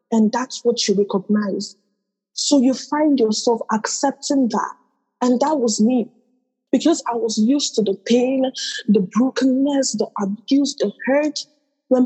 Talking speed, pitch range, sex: 145 wpm, 205-255 Hz, female